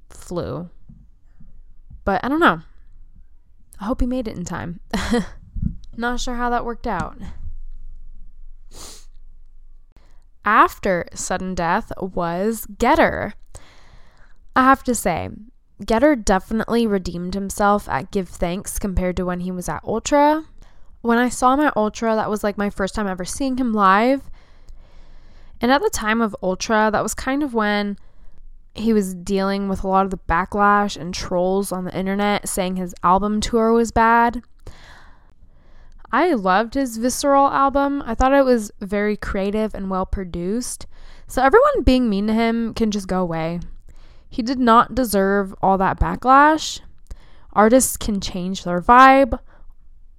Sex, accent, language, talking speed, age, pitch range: female, American, English, 145 wpm, 10-29, 180-240 Hz